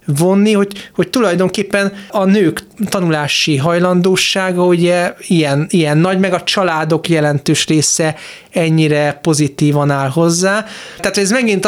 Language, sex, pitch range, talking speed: Hungarian, male, 150-185 Hz, 125 wpm